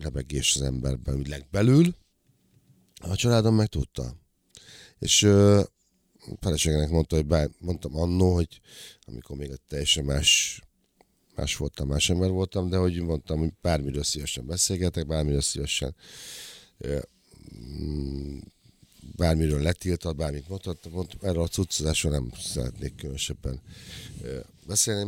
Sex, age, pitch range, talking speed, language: male, 50-69, 70-95 Hz, 115 wpm, Hungarian